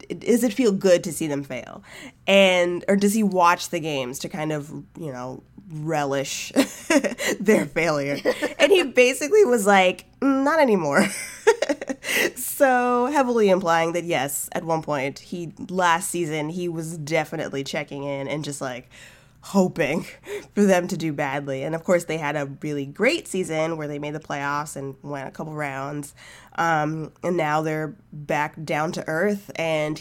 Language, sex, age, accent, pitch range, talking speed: English, female, 20-39, American, 150-215 Hz, 170 wpm